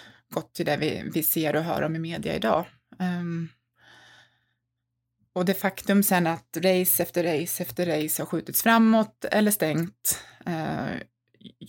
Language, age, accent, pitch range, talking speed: Swedish, 20-39, native, 160-195 Hz, 150 wpm